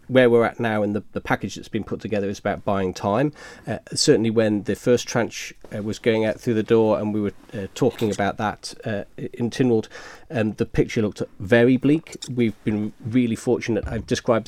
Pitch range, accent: 105-120 Hz, British